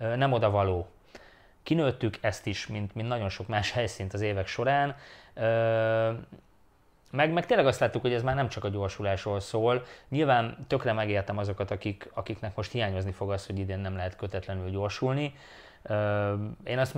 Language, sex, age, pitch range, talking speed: English, male, 20-39, 100-115 Hz, 160 wpm